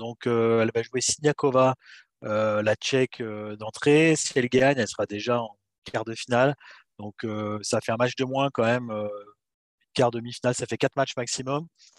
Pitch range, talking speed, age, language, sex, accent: 110-135 Hz, 200 wpm, 30-49, French, male, French